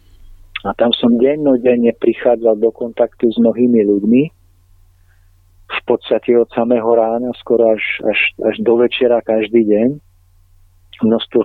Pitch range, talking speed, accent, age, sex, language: 90-120 Hz, 125 wpm, native, 40-59, male, Czech